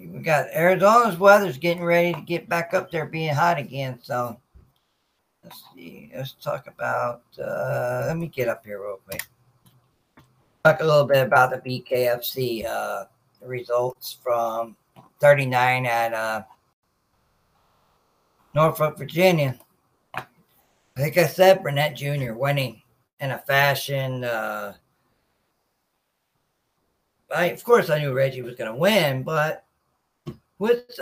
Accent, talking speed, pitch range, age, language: American, 130 wpm, 125-175 Hz, 50-69, English